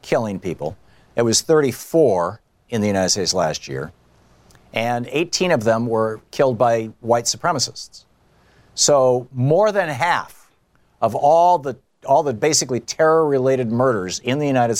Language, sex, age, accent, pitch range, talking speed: English, male, 50-69, American, 110-140 Hz, 140 wpm